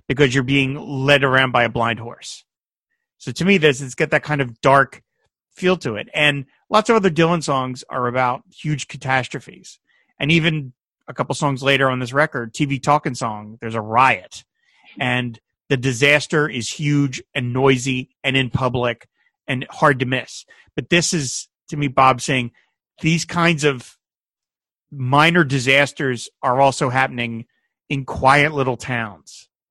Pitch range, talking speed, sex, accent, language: 125-150 Hz, 160 wpm, male, American, English